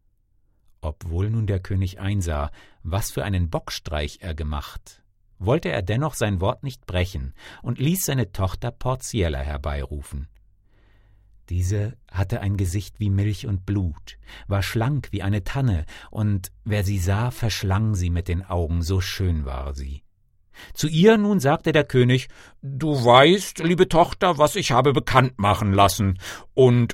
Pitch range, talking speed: 95-155 Hz, 150 wpm